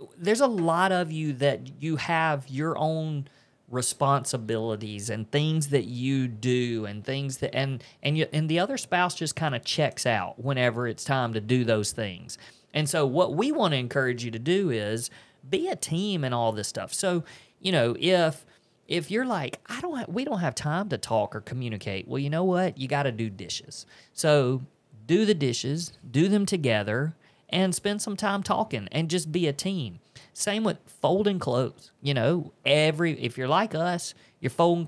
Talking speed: 195 wpm